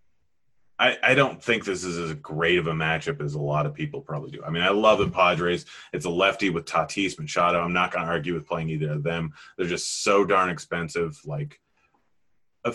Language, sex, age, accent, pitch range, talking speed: English, male, 30-49, American, 75-90 Hz, 220 wpm